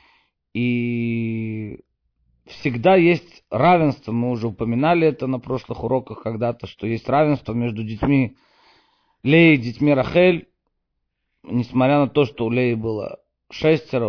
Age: 40-59